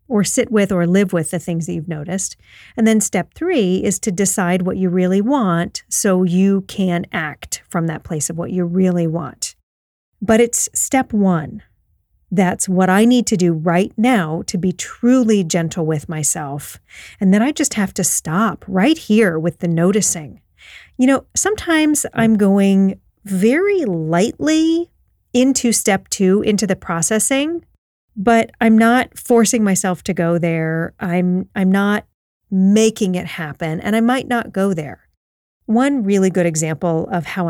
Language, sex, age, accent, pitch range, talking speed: English, female, 40-59, American, 170-220 Hz, 165 wpm